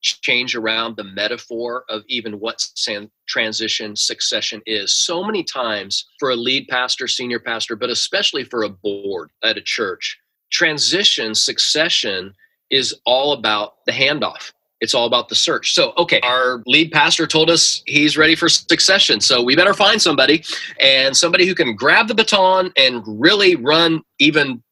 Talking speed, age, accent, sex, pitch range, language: 160 wpm, 30-49, American, male, 115-170 Hz, English